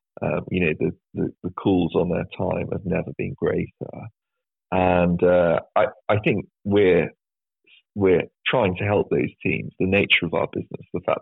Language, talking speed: English, 175 wpm